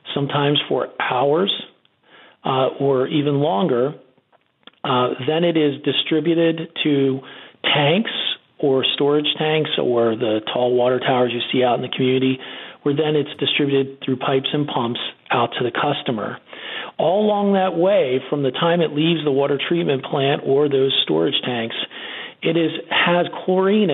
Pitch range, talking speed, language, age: 130-160 Hz, 155 wpm, English, 40-59